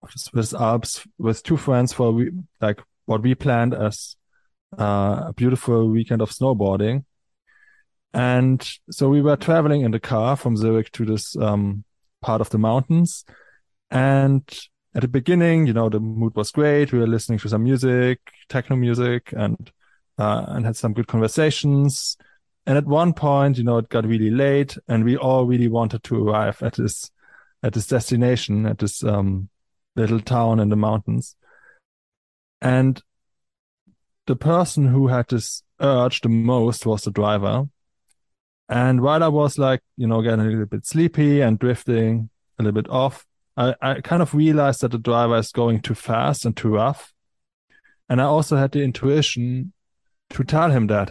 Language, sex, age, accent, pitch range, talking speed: English, male, 20-39, German, 110-140 Hz, 170 wpm